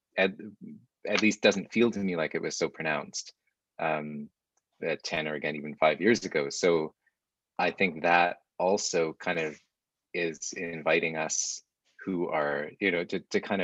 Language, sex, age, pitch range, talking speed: English, male, 20-39, 80-100 Hz, 165 wpm